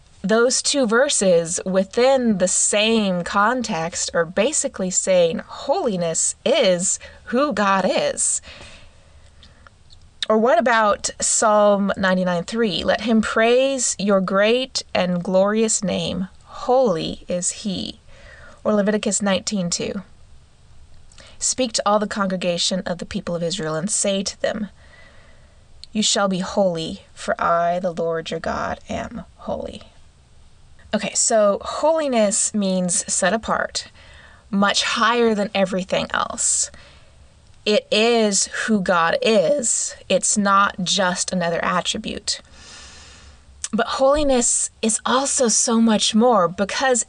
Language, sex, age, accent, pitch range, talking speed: English, female, 20-39, American, 185-245 Hz, 115 wpm